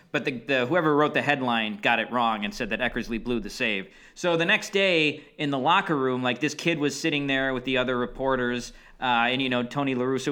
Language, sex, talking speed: English, male, 245 wpm